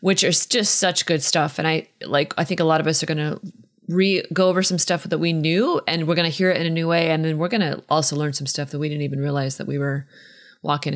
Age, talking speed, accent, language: 30-49, 295 wpm, American, English